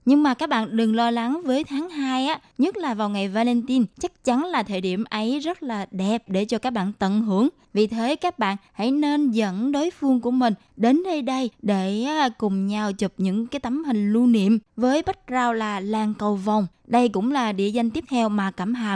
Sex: female